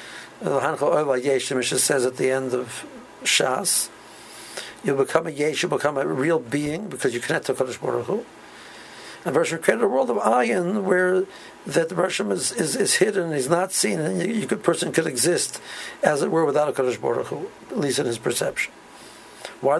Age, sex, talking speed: 60-79, male, 200 wpm